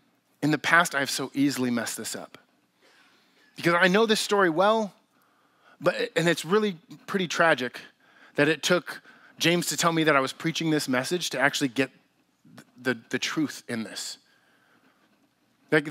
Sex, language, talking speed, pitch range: male, English, 165 wpm, 155-205 Hz